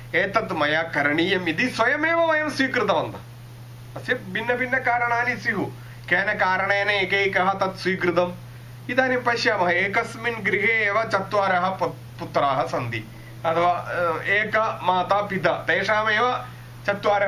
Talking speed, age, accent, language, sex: 95 wpm, 30-49, Indian, English, male